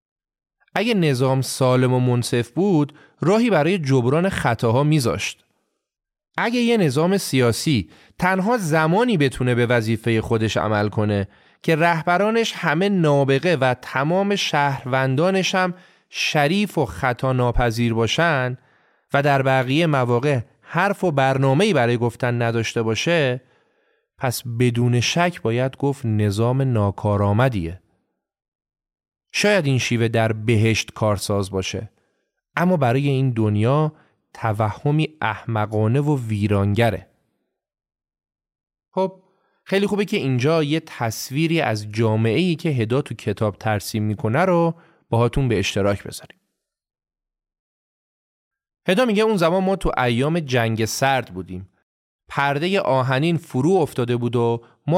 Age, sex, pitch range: 30-49, male, 115-165 Hz